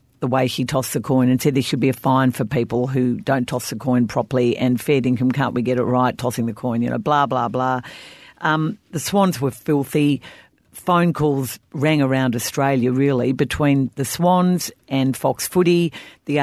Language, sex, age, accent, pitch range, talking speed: English, female, 50-69, Australian, 130-150 Hz, 200 wpm